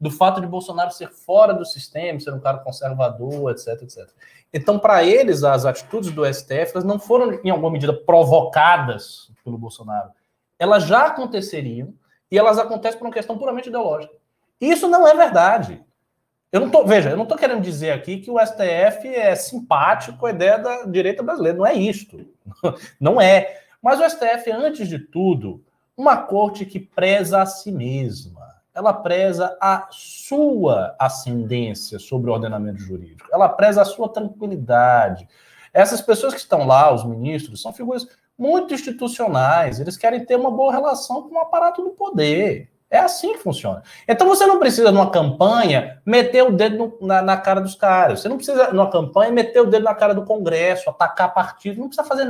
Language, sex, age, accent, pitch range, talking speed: Portuguese, male, 20-39, Brazilian, 155-245 Hz, 180 wpm